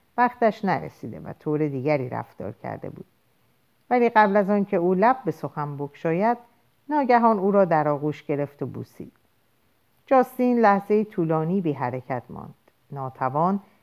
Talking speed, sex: 150 wpm, female